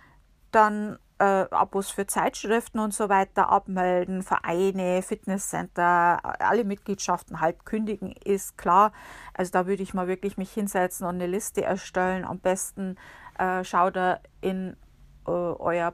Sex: female